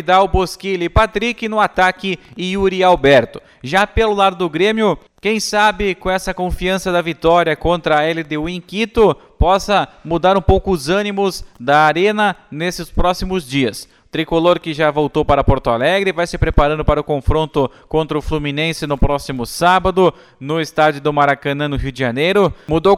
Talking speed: 175 wpm